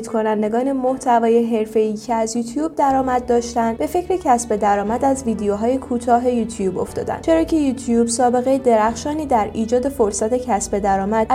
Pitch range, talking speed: 225-285 Hz, 150 wpm